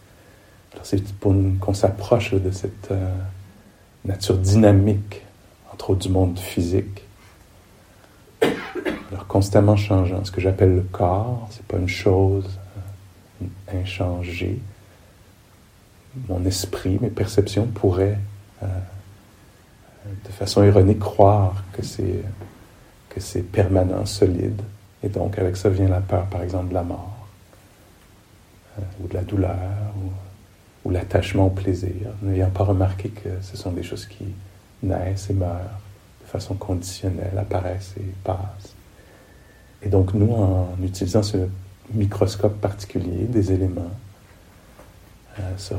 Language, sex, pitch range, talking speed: English, male, 95-100 Hz, 125 wpm